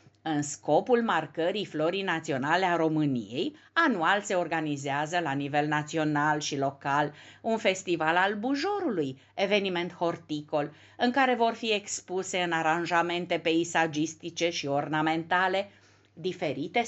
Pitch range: 160-230 Hz